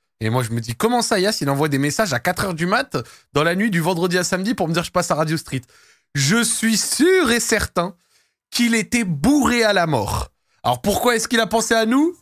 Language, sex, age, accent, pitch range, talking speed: French, male, 20-39, French, 120-185 Hz, 255 wpm